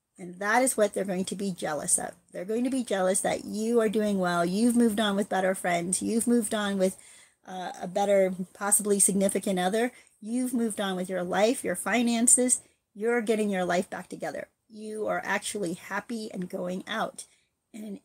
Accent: American